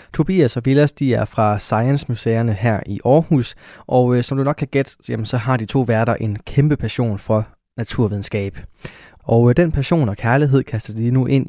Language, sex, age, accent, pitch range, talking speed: Danish, male, 20-39, native, 110-135 Hz, 200 wpm